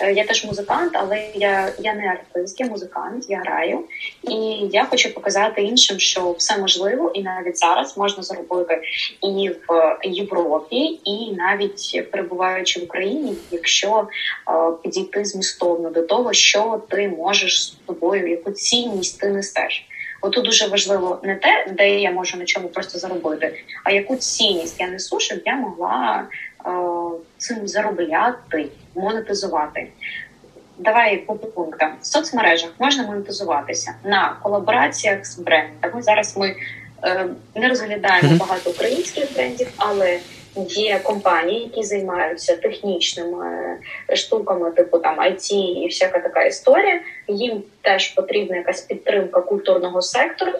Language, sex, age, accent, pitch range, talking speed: Ukrainian, female, 20-39, native, 180-215 Hz, 135 wpm